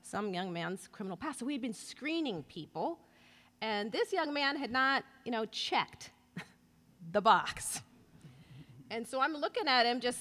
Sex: female